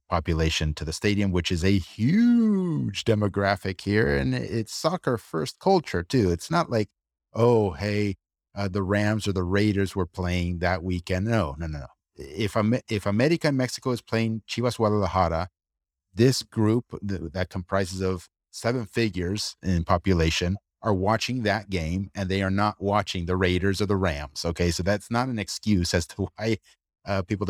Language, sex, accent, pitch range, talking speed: English, male, American, 90-110 Hz, 170 wpm